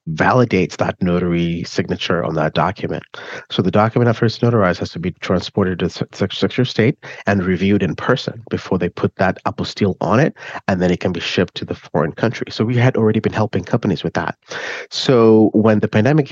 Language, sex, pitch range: English, male, 85-110 Hz